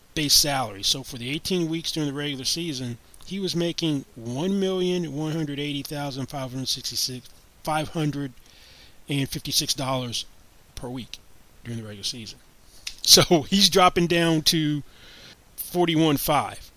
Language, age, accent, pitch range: English, 30-49, American, 130-170 Hz